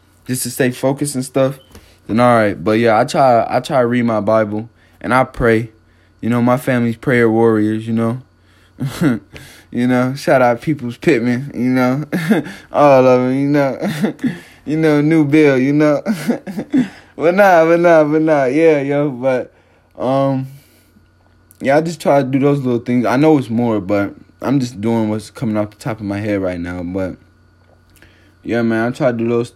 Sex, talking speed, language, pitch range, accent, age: male, 190 wpm, English, 95-130 Hz, American, 20-39